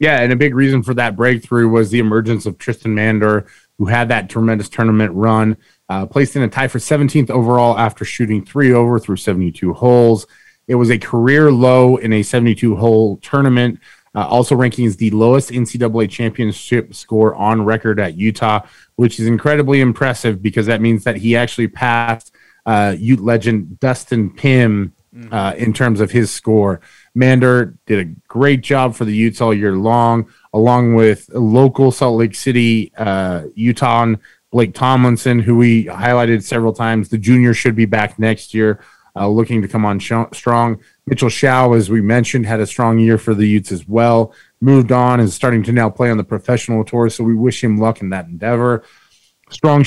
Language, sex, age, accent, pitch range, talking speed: English, male, 30-49, American, 110-125 Hz, 185 wpm